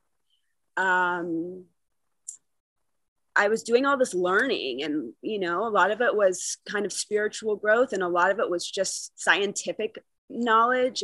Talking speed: 150 wpm